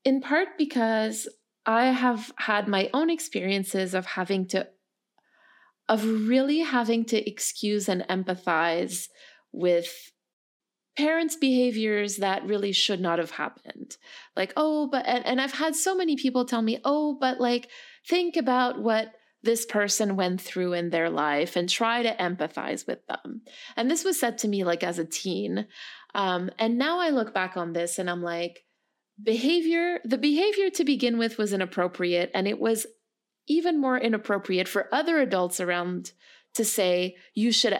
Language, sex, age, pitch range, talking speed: English, female, 30-49, 190-275 Hz, 160 wpm